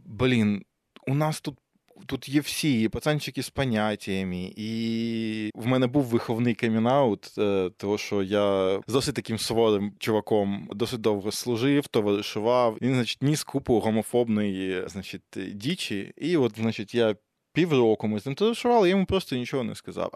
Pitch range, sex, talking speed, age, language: 110-145 Hz, male, 150 wpm, 20-39, Ukrainian